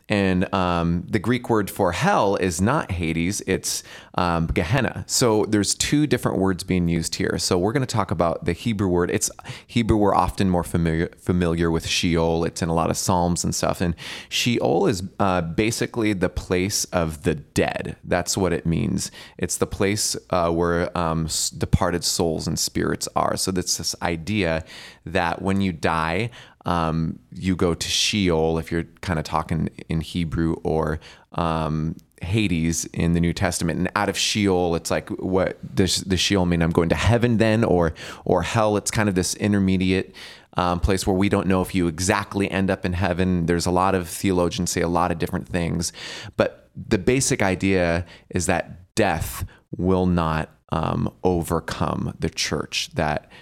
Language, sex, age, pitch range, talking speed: English, male, 30-49, 85-100 Hz, 180 wpm